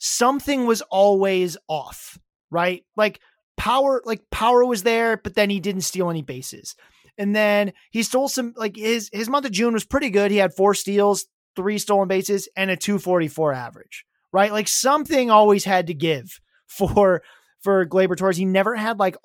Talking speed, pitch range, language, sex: 180 wpm, 175-210 Hz, English, male